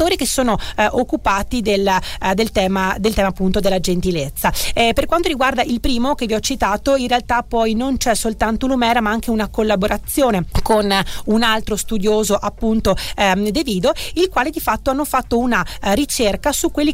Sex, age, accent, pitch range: female, 30-49, native, 205-250 Hz